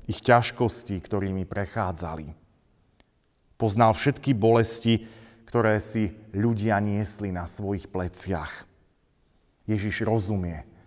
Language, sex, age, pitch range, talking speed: Slovak, male, 40-59, 100-130 Hz, 90 wpm